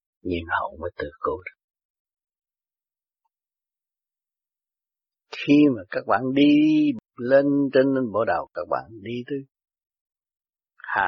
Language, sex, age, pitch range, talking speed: Vietnamese, male, 60-79, 115-185 Hz, 110 wpm